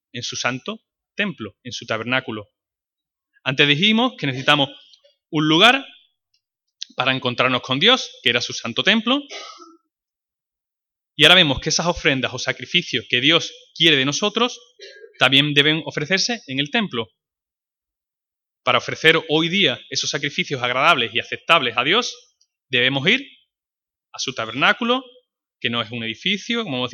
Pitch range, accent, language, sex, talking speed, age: 125-210 Hz, Spanish, Spanish, male, 145 wpm, 30-49